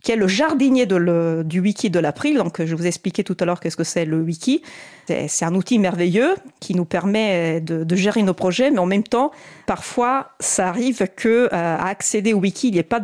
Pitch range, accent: 170-215 Hz, French